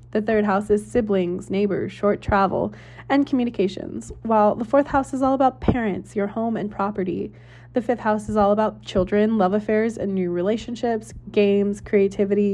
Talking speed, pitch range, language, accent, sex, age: 170 wpm, 180-205 Hz, English, American, female, 20-39